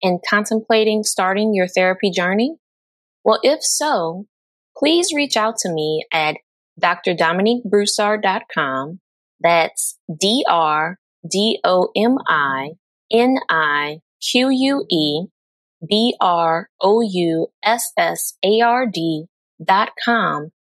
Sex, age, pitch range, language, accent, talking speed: female, 20-39, 175-235 Hz, English, American, 50 wpm